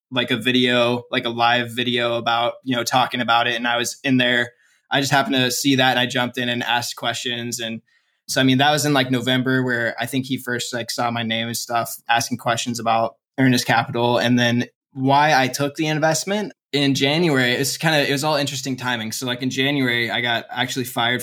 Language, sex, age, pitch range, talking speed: English, male, 20-39, 120-130 Hz, 230 wpm